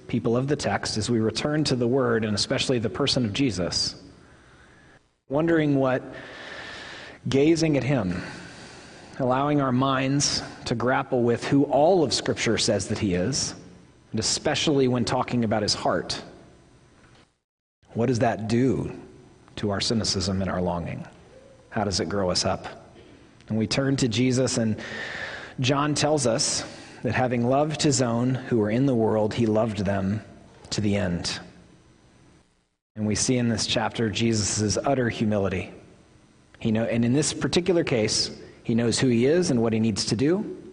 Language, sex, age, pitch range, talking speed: English, male, 30-49, 110-130 Hz, 160 wpm